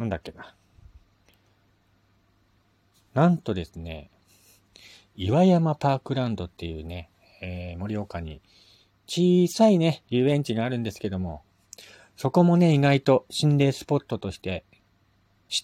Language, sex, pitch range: Japanese, male, 95-120 Hz